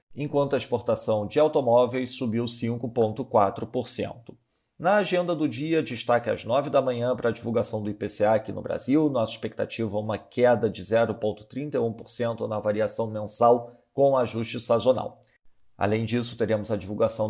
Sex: male